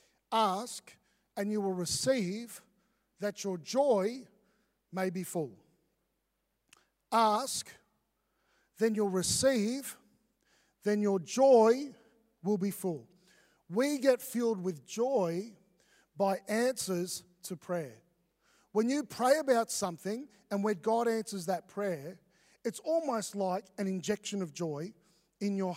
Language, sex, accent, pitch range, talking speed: English, male, Australian, 180-225 Hz, 115 wpm